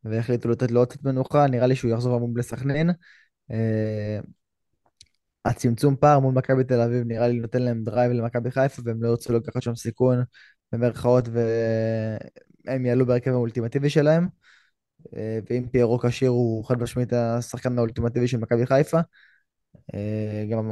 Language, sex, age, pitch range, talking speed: Hebrew, male, 20-39, 115-130 Hz, 140 wpm